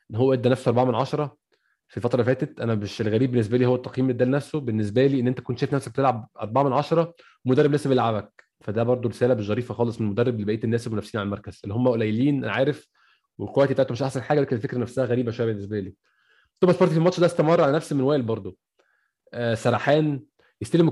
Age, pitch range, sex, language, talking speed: 20-39, 120-150 Hz, male, Arabic, 220 wpm